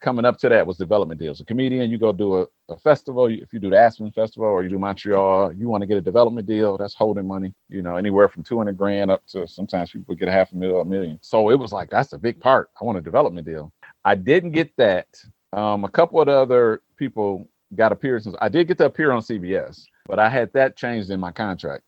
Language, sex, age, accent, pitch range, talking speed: English, male, 40-59, American, 95-125 Hz, 250 wpm